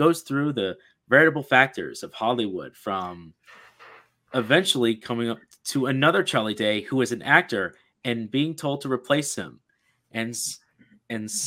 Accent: American